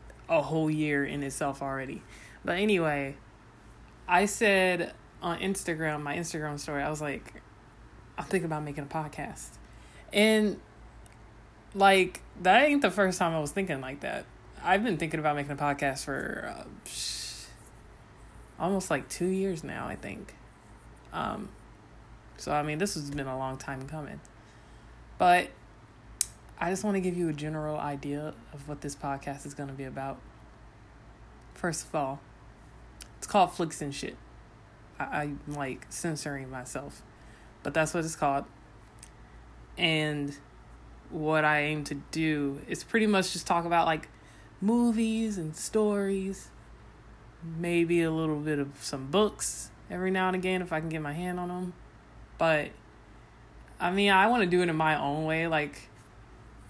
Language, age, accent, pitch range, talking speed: English, 20-39, American, 140-180 Hz, 155 wpm